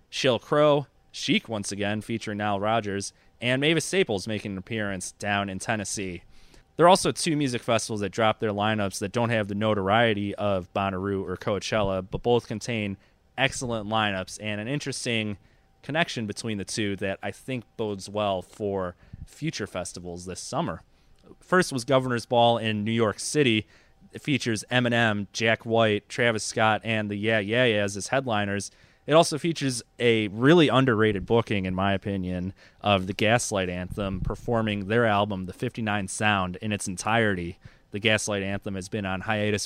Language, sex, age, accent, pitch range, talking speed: English, male, 30-49, American, 100-115 Hz, 165 wpm